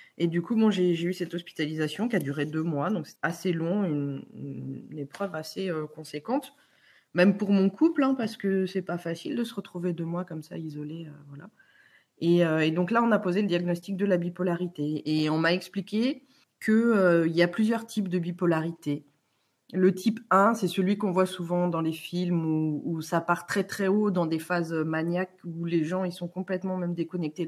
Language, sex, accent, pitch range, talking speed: French, female, French, 170-205 Hz, 220 wpm